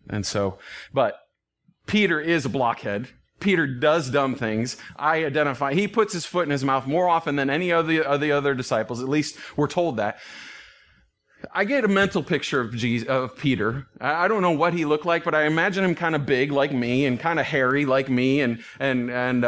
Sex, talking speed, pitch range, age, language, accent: male, 205 wpm, 135-180 Hz, 30-49, English, American